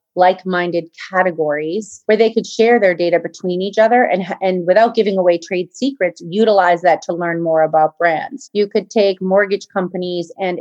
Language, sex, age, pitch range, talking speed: English, female, 30-49, 170-200 Hz, 175 wpm